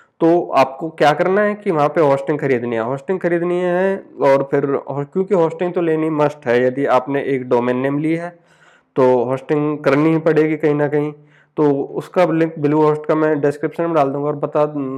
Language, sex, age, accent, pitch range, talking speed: Hindi, male, 20-39, native, 140-160 Hz, 200 wpm